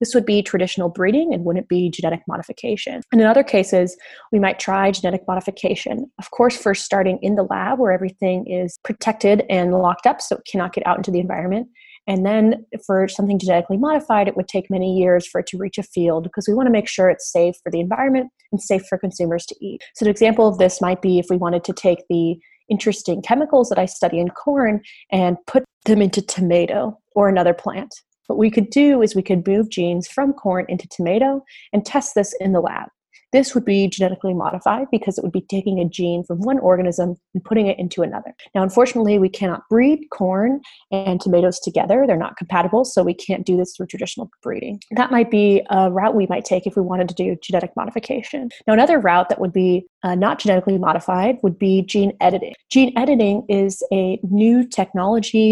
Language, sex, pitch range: English, female, 185-225 Hz